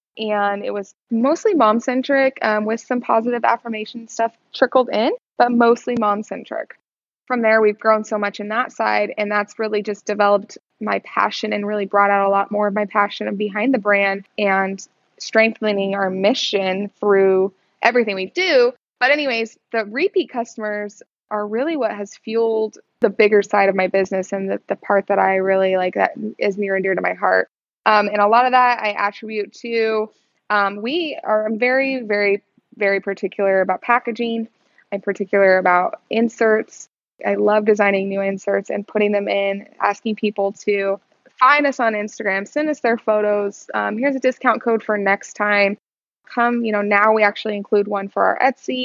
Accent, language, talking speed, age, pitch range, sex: American, English, 180 wpm, 20-39, 200-235 Hz, female